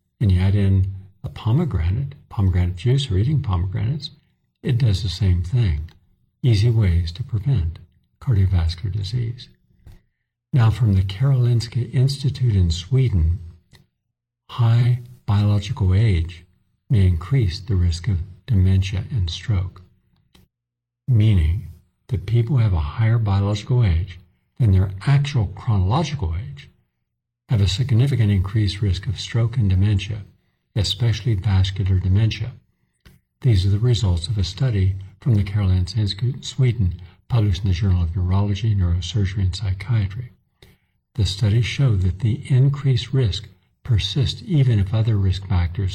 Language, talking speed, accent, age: English, 130 wpm, American, 60-79